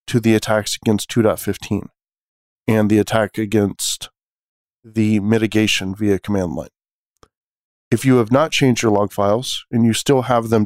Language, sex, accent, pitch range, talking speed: English, male, American, 105-120 Hz, 150 wpm